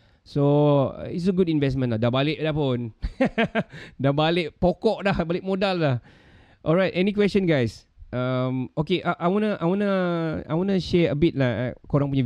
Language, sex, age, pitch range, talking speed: Malay, male, 20-39, 120-155 Hz, 175 wpm